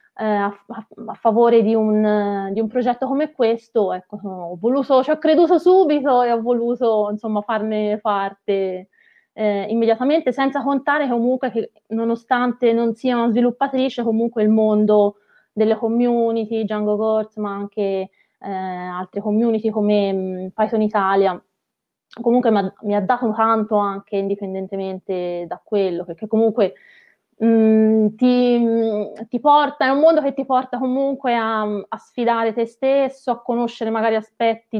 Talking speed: 135 wpm